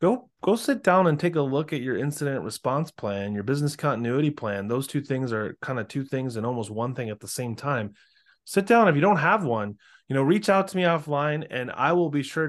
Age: 20-39